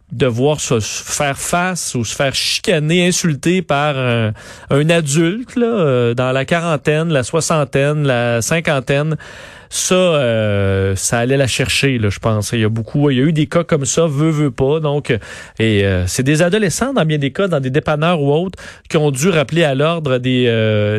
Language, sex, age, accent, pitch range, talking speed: French, male, 30-49, Canadian, 125-170 Hz, 195 wpm